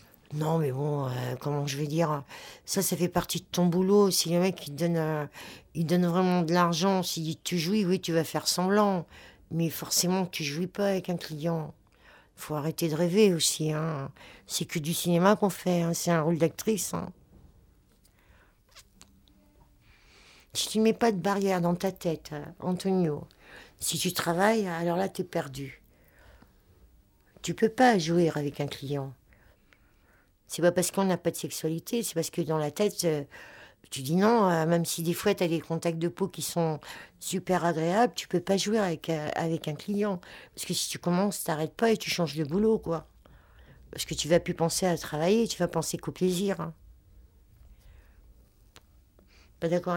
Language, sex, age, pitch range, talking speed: French, female, 60-79, 150-180 Hz, 200 wpm